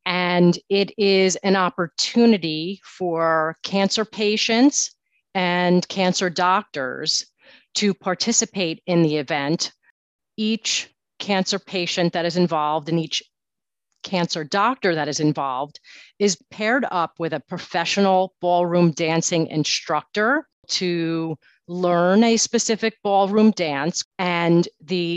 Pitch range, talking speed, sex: 165-195 Hz, 110 wpm, female